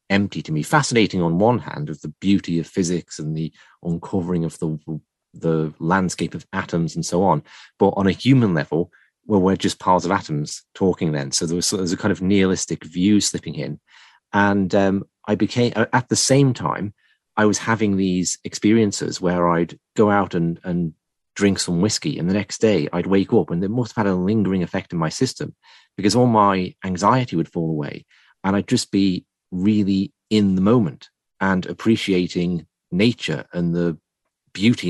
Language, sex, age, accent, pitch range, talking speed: English, male, 30-49, British, 85-105 Hz, 190 wpm